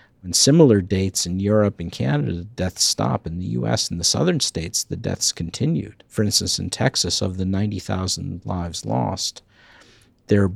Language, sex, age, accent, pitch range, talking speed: English, male, 50-69, American, 90-115 Hz, 175 wpm